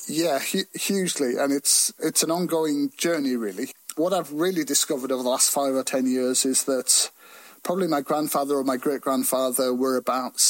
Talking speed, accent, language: 175 wpm, British, English